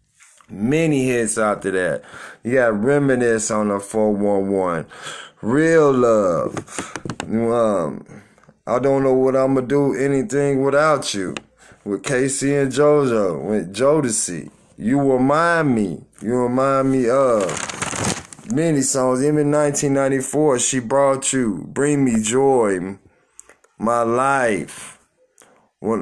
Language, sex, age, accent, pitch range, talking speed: English, male, 20-39, American, 115-145 Hz, 115 wpm